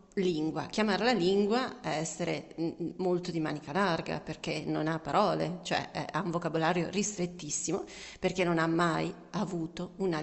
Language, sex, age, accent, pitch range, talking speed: Italian, female, 40-59, native, 160-190 Hz, 140 wpm